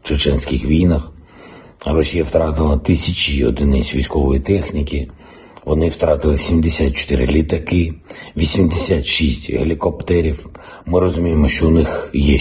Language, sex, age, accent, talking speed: Ukrainian, male, 50-69, native, 100 wpm